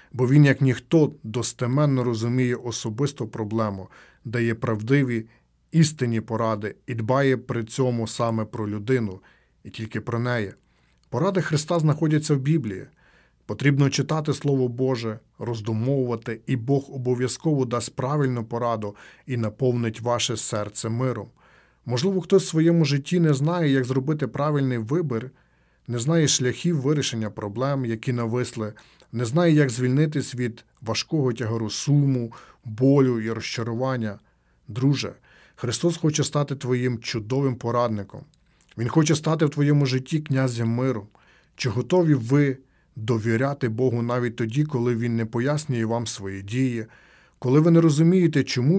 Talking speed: 130 wpm